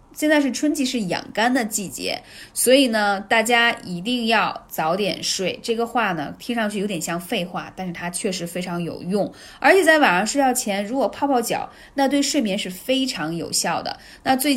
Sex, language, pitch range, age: female, Chinese, 185-260 Hz, 20-39